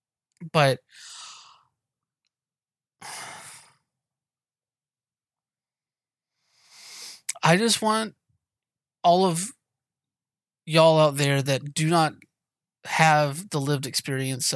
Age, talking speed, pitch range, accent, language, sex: 30-49, 65 wpm, 130-155 Hz, American, English, male